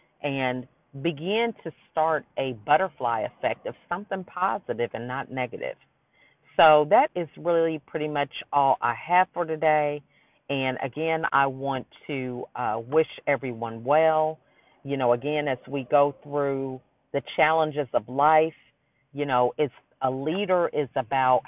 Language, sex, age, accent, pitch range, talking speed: English, female, 40-59, American, 130-160 Hz, 140 wpm